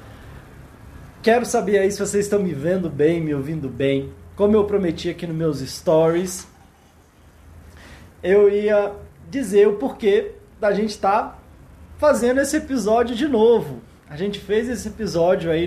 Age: 20-39